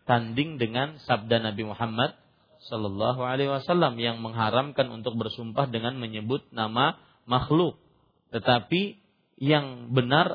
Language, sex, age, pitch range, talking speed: Malay, male, 40-59, 115-140 Hz, 100 wpm